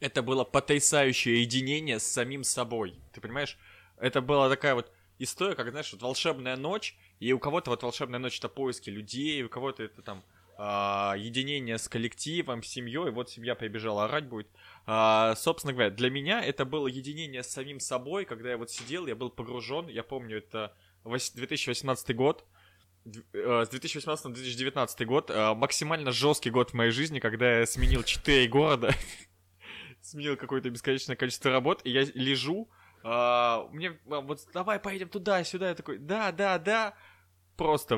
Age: 20-39